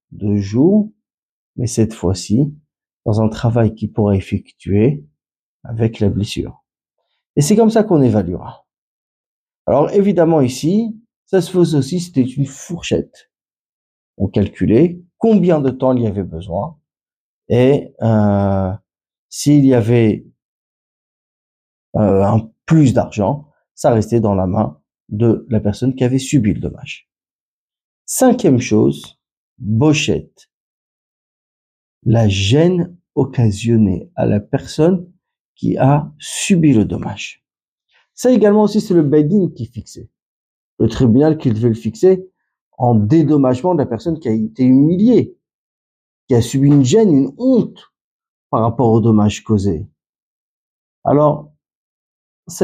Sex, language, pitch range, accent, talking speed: male, French, 105-165 Hz, French, 130 wpm